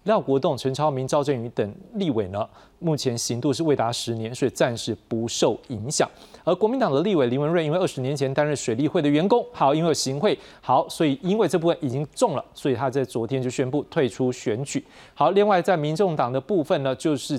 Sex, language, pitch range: male, Chinese, 125-155 Hz